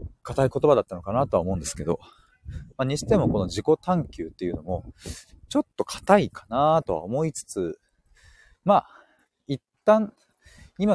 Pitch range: 95-155 Hz